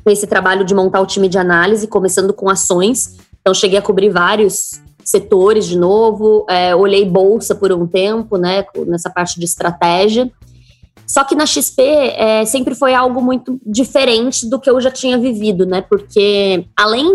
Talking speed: 170 wpm